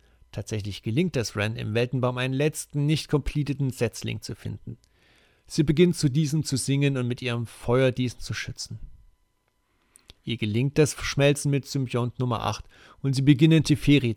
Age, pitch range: 40-59, 100-145 Hz